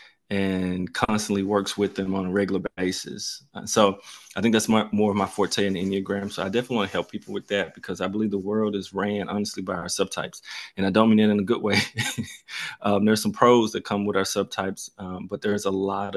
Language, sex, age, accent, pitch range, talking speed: English, male, 20-39, American, 95-105 Hz, 235 wpm